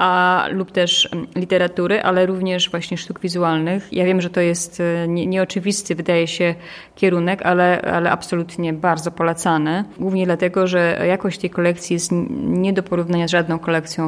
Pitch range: 170-190 Hz